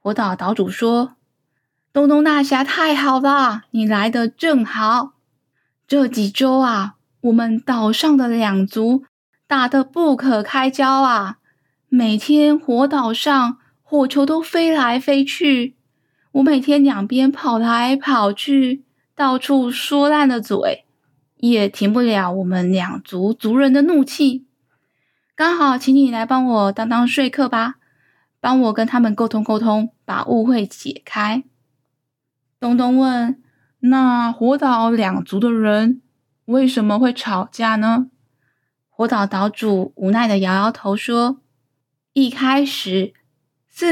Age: 10-29